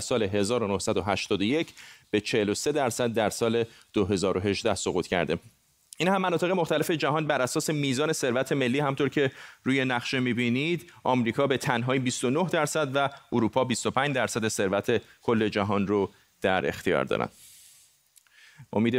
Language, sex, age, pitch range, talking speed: Persian, male, 30-49, 120-155 Hz, 135 wpm